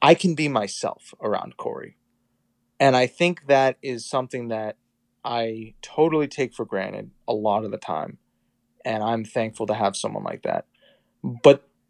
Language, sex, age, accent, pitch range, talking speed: English, male, 30-49, American, 115-150 Hz, 160 wpm